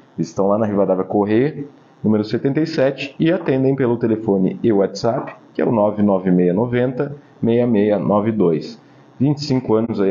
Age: 40-59